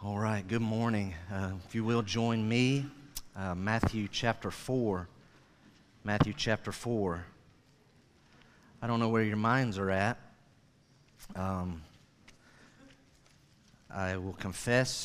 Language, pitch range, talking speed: English, 95-120 Hz, 115 wpm